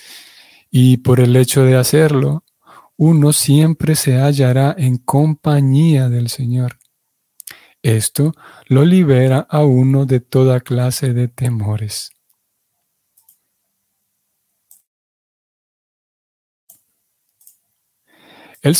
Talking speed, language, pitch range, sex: 80 wpm, Spanish, 130-155 Hz, male